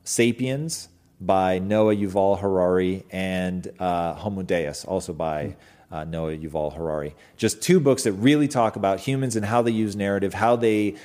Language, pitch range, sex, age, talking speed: English, 100-130 Hz, male, 30-49, 165 wpm